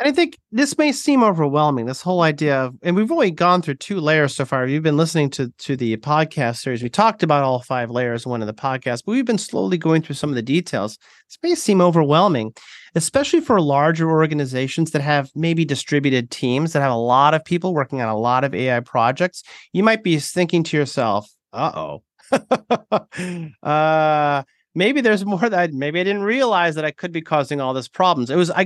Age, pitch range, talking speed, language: 30-49, 130-180 Hz, 215 wpm, English